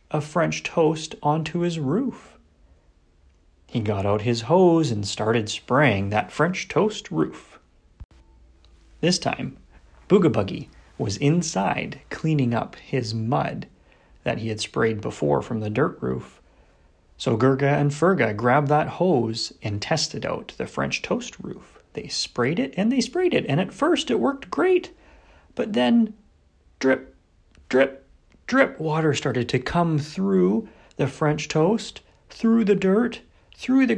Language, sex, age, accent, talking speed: English, male, 30-49, American, 145 wpm